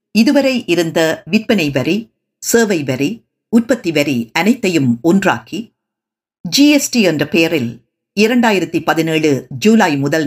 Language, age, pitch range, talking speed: Tamil, 50-69, 155-225 Hz, 100 wpm